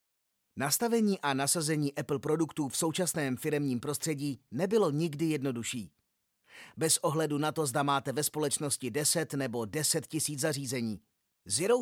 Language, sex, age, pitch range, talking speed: Czech, male, 30-49, 140-170 Hz, 130 wpm